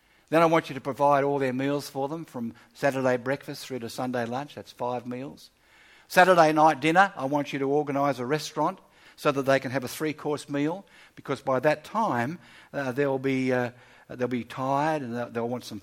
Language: English